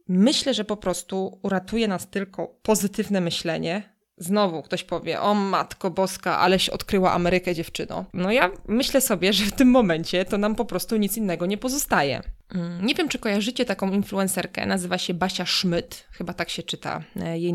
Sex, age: female, 20-39